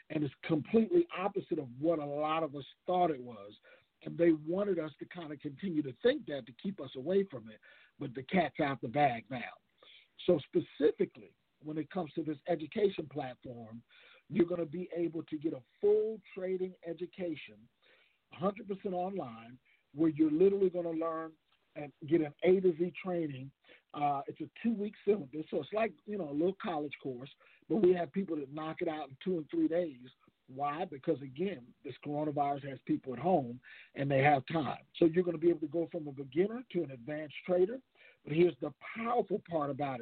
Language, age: English, 50-69